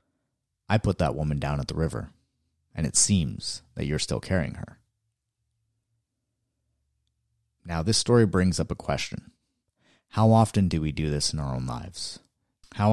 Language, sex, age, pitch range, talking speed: English, male, 30-49, 80-105 Hz, 160 wpm